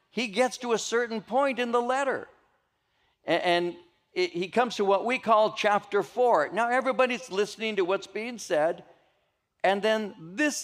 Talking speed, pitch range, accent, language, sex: 160 wpm, 130-210 Hz, American, English, male